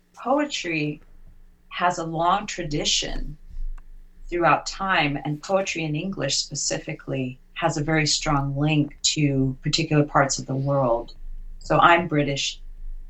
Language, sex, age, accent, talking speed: English, female, 40-59, American, 120 wpm